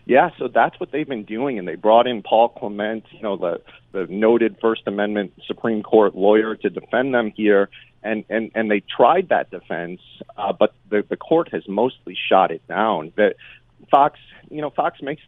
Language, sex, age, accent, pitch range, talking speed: English, male, 40-59, American, 105-120 Hz, 195 wpm